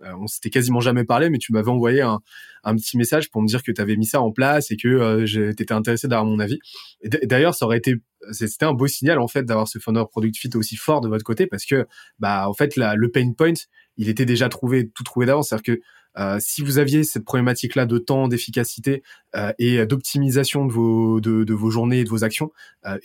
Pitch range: 110-130 Hz